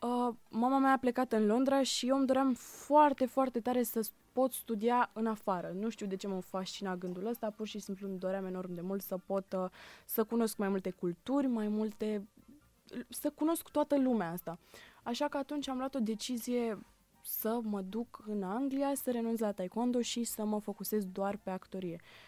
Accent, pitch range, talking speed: native, 200-255 Hz, 190 wpm